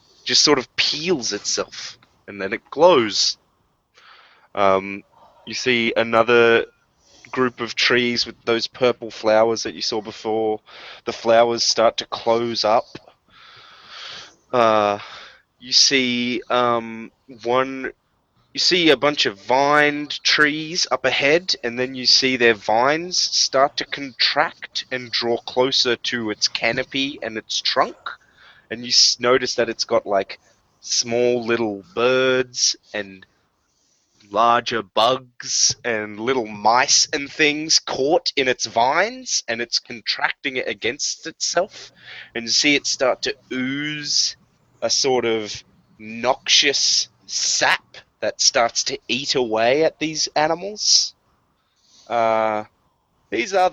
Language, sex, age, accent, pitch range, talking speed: English, male, 20-39, Australian, 115-135 Hz, 125 wpm